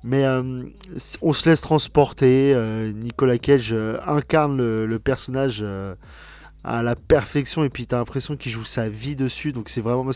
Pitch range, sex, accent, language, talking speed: 110-140 Hz, male, French, French, 190 wpm